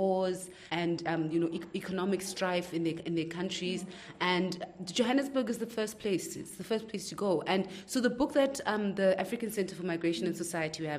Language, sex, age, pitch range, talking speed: English, female, 30-49, 165-195 Hz, 200 wpm